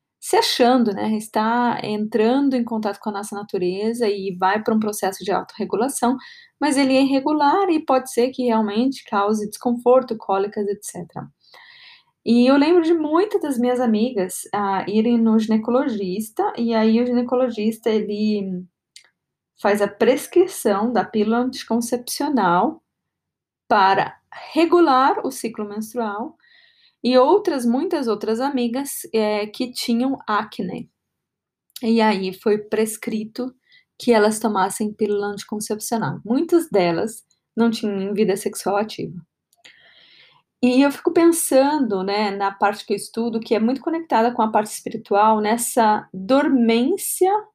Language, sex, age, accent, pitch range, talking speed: Portuguese, female, 10-29, Brazilian, 210-265 Hz, 130 wpm